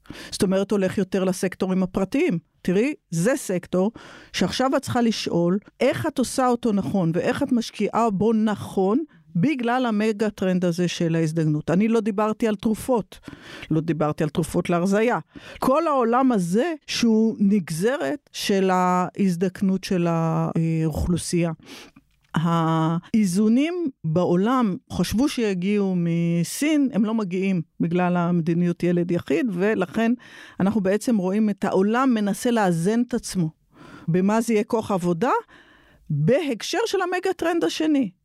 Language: Hebrew